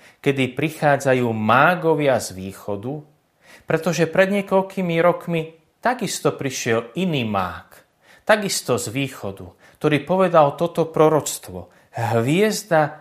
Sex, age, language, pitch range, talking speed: male, 30-49, Slovak, 110-155 Hz, 95 wpm